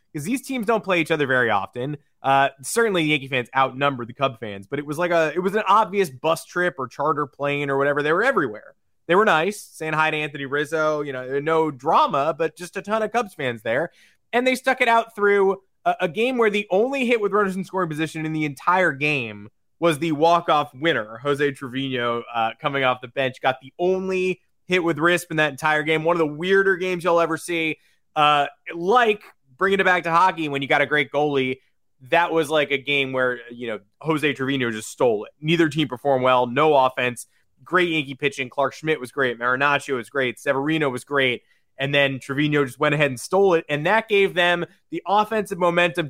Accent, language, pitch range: American, English, 140-185 Hz